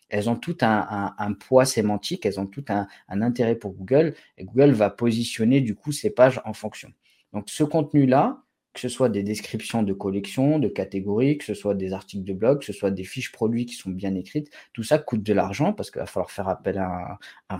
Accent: French